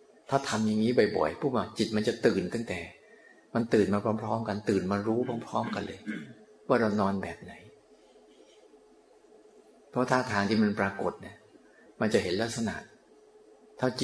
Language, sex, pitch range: Thai, male, 100-120 Hz